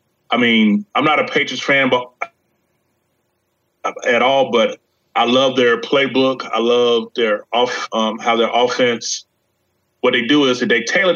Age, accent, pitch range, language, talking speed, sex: 30-49, American, 115-135 Hz, English, 160 wpm, male